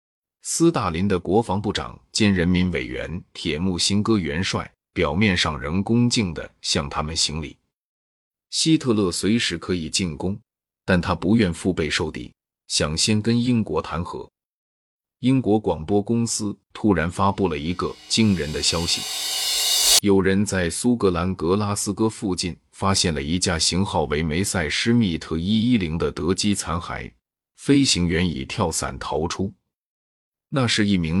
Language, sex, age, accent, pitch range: Chinese, male, 30-49, native, 85-105 Hz